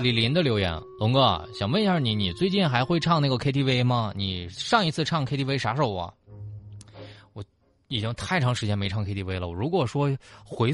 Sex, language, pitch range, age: male, Chinese, 105-160 Hz, 20-39